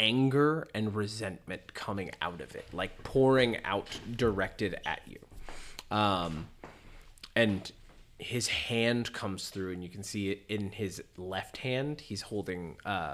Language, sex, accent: English, male, American